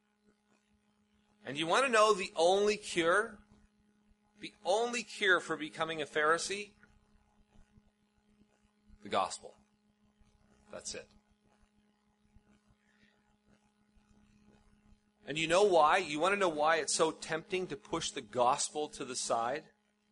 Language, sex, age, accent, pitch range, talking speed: English, male, 40-59, American, 145-210 Hz, 115 wpm